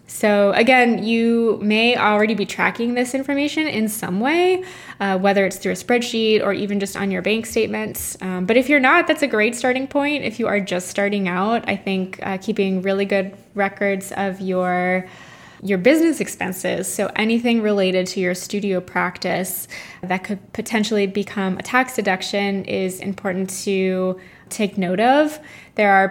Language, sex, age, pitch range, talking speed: English, female, 10-29, 190-230 Hz, 170 wpm